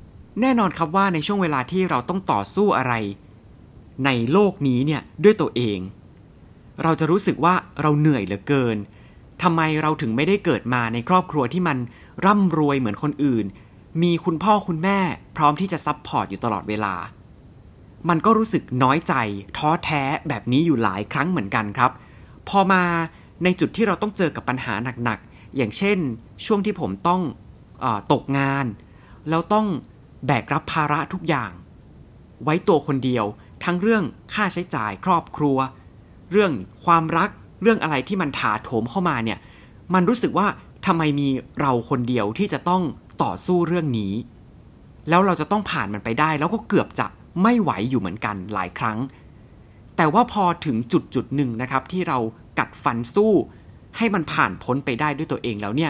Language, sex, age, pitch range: Thai, male, 30-49, 115-175 Hz